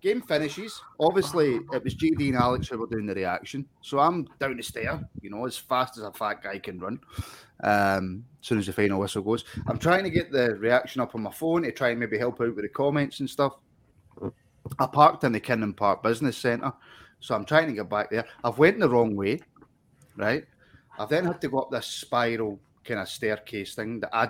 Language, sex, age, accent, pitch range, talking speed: English, male, 30-49, British, 115-150 Hz, 225 wpm